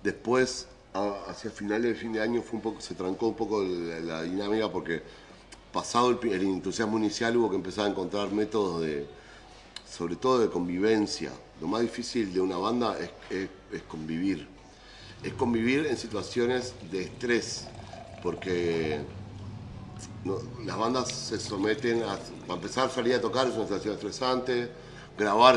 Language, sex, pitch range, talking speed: Spanish, male, 95-125 Hz, 155 wpm